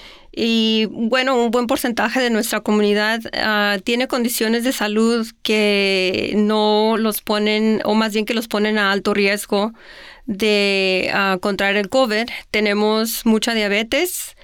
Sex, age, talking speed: female, 30-49, 140 wpm